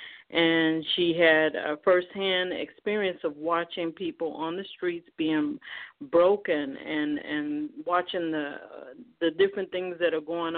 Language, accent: English, American